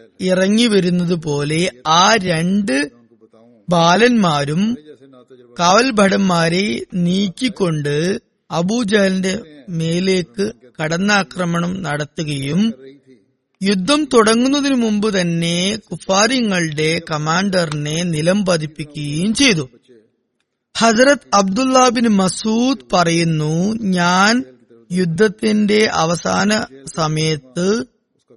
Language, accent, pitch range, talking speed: Malayalam, native, 160-200 Hz, 60 wpm